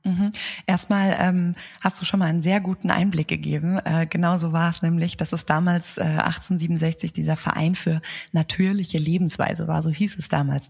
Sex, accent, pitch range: female, German, 160-185 Hz